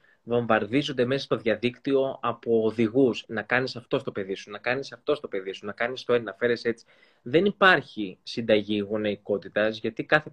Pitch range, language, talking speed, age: 115-170 Hz, Greek, 175 wpm, 20-39